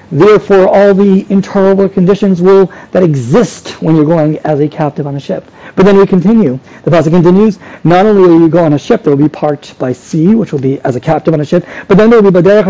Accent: American